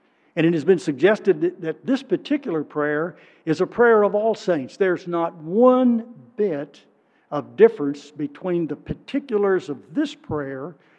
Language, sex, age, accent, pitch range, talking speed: English, male, 60-79, American, 150-190 Hz, 145 wpm